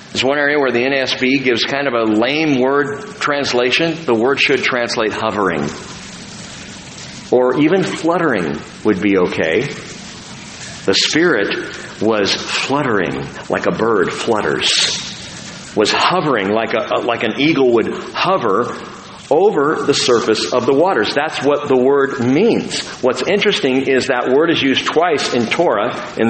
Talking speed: 145 wpm